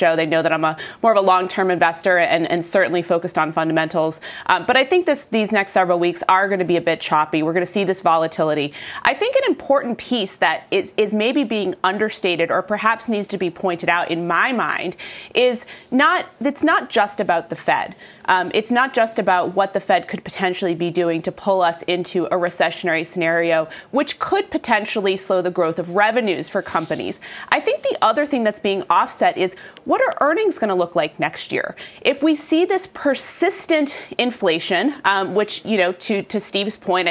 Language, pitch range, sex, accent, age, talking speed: English, 175-245 Hz, female, American, 30-49, 205 wpm